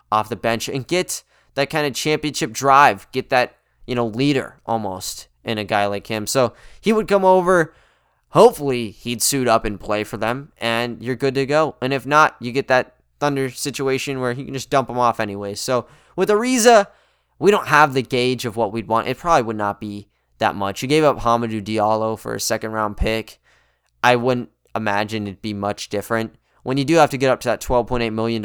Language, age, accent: English, 10-29, American